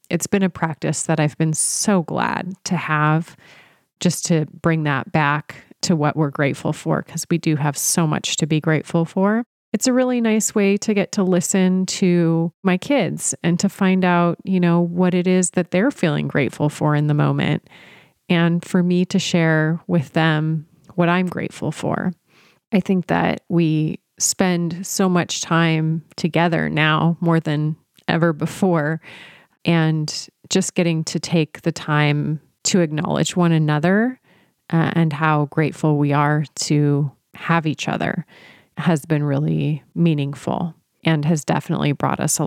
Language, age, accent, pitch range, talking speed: English, 30-49, American, 155-180 Hz, 160 wpm